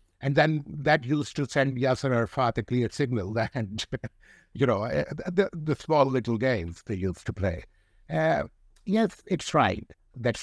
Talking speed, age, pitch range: 160 wpm, 60-79, 105-140 Hz